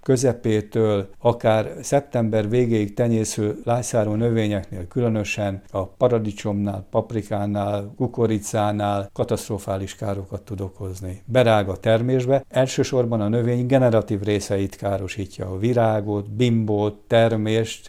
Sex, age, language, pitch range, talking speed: male, 60-79, Hungarian, 105-120 Hz, 95 wpm